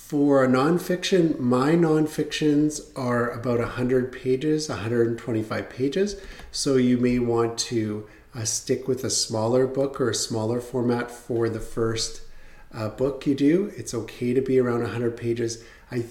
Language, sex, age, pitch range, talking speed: English, male, 40-59, 115-130 Hz, 155 wpm